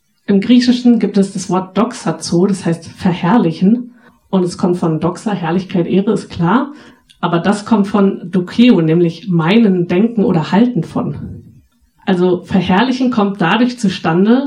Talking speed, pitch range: 145 wpm, 175-215 Hz